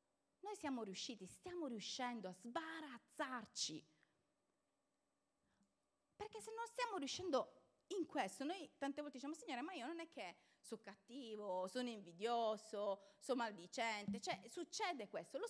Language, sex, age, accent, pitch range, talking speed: Italian, female, 30-49, native, 230-315 Hz, 130 wpm